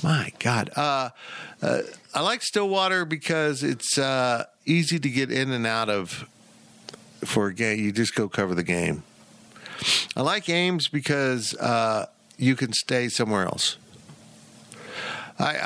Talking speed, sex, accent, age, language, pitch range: 140 wpm, male, American, 50-69, English, 125-180 Hz